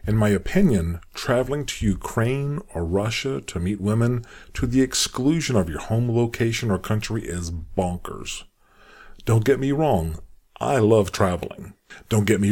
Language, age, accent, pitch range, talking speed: English, 40-59, American, 95-130 Hz, 155 wpm